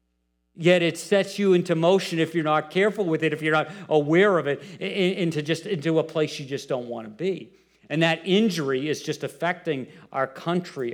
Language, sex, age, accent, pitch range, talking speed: English, male, 50-69, American, 140-180 Hz, 205 wpm